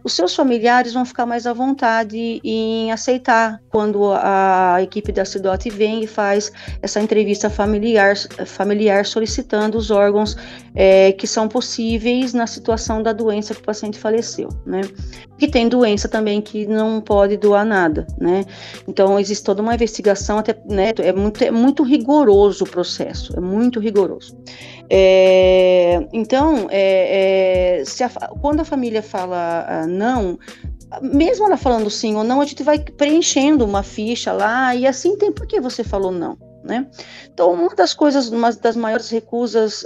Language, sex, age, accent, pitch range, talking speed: Portuguese, female, 40-59, Brazilian, 200-245 Hz, 155 wpm